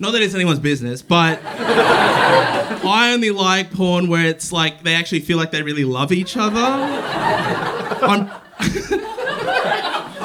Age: 20-39